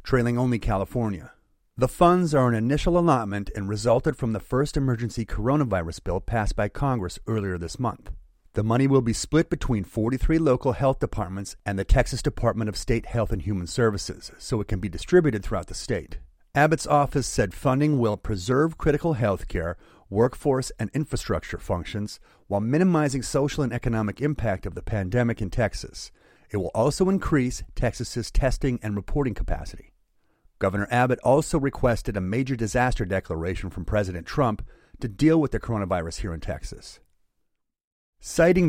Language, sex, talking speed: English, male, 160 wpm